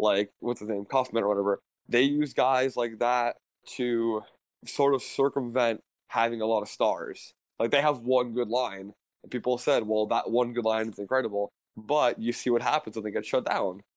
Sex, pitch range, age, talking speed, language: male, 115-150 Hz, 20-39, 200 wpm, English